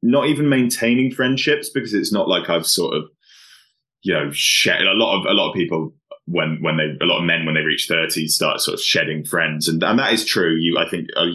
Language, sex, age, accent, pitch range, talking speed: English, male, 20-39, British, 80-90 Hz, 245 wpm